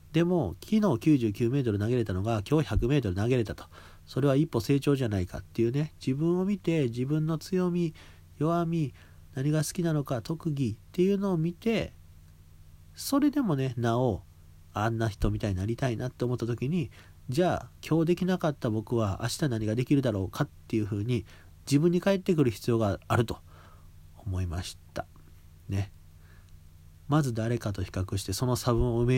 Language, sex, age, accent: Japanese, male, 40-59, native